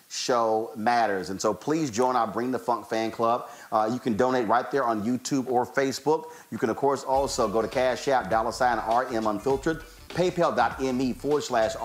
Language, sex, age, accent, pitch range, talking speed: English, male, 40-59, American, 115-155 Hz, 195 wpm